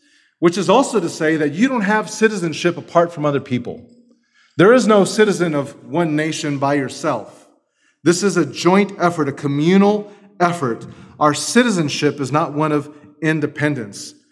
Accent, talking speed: American, 160 wpm